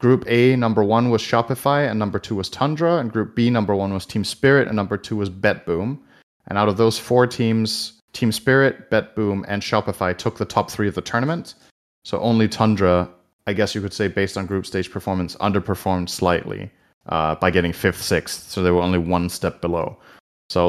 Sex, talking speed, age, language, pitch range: male, 205 wpm, 30-49, English, 95-115 Hz